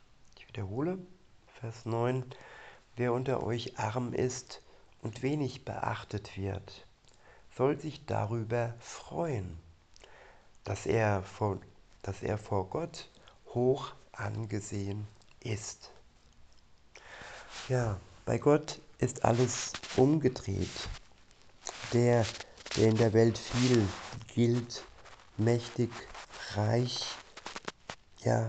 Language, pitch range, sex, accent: German, 105-125 Hz, male, German